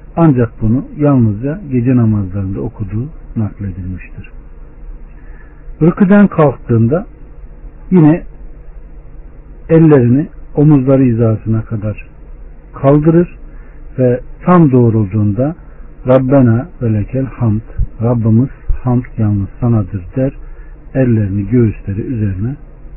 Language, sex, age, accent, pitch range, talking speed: Turkish, male, 60-79, native, 110-145 Hz, 75 wpm